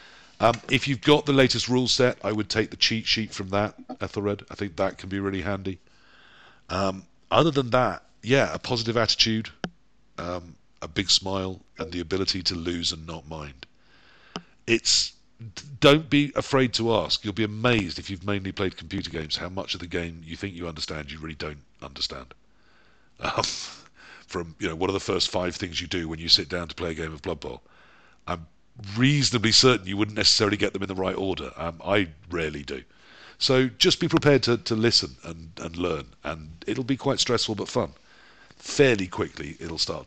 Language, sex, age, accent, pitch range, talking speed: English, male, 50-69, British, 90-125 Hz, 200 wpm